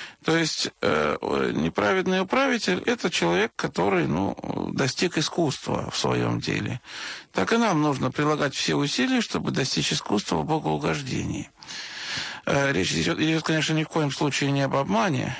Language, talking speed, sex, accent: Russian, 140 wpm, male, native